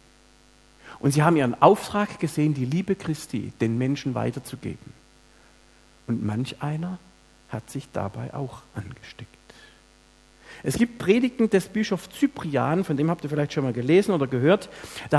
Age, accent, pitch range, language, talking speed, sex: 50-69, German, 130-185 Hz, German, 145 wpm, male